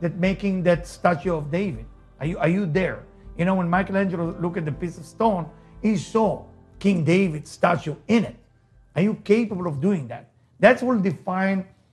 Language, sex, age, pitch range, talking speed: English, male, 50-69, 145-195 Hz, 185 wpm